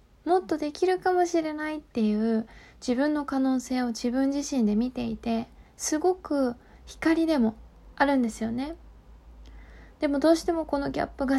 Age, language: 20-39, Japanese